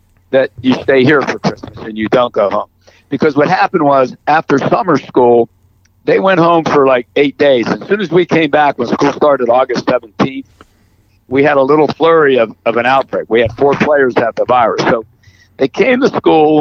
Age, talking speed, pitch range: 60-79, 210 wpm, 115-150 Hz